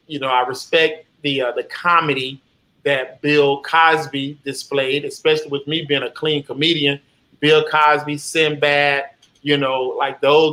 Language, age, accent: English, 30-49, American